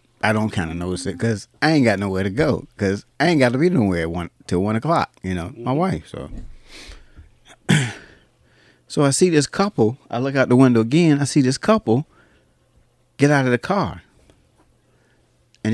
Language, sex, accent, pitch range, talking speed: English, male, American, 90-135 Hz, 195 wpm